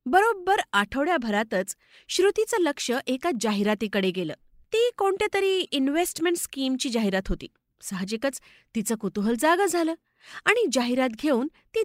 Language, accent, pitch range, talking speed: Marathi, native, 215-300 Hz, 90 wpm